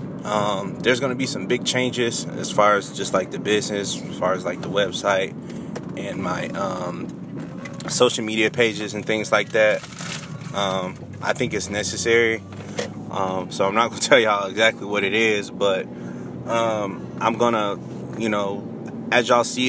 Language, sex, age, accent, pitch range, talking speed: English, male, 20-39, American, 105-130 Hz, 180 wpm